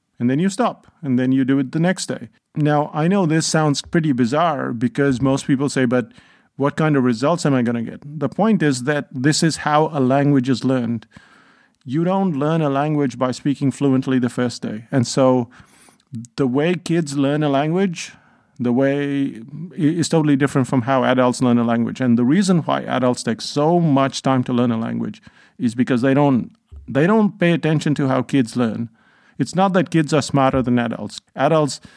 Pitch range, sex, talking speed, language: 120-145 Hz, male, 200 wpm, English